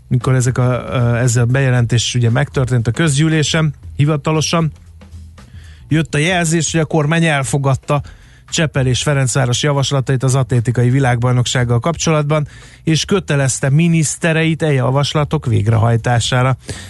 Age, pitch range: 30-49, 120-145 Hz